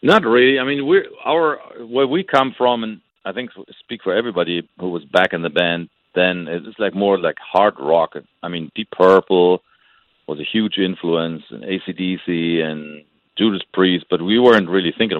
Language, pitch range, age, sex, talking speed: English, 85-100 Hz, 50-69, male, 200 wpm